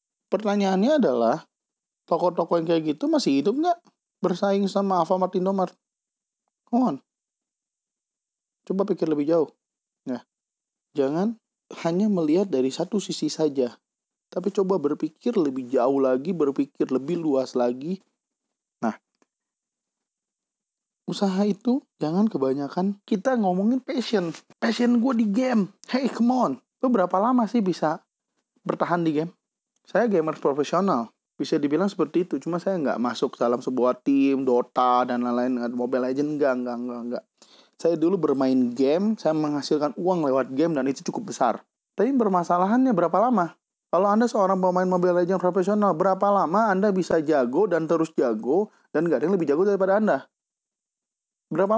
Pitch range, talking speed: 155-215 Hz, 145 wpm